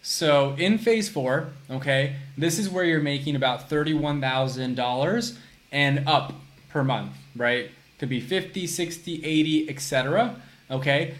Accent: American